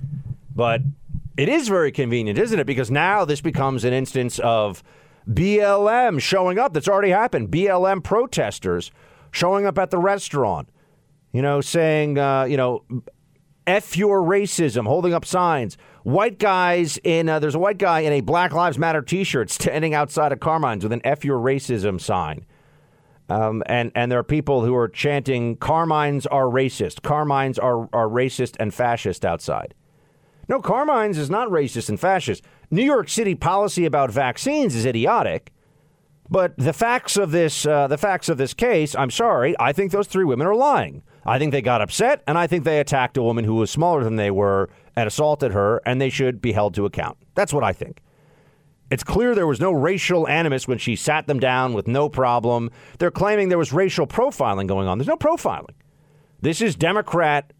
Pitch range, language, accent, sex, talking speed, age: 125-170 Hz, English, American, male, 185 wpm, 40-59